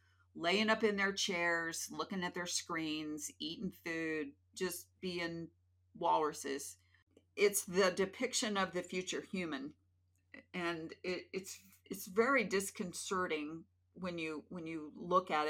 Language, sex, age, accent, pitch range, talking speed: English, female, 50-69, American, 145-195 Hz, 130 wpm